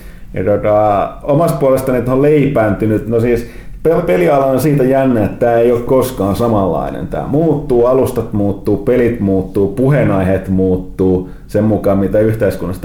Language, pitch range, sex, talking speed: Finnish, 95-120 Hz, male, 140 wpm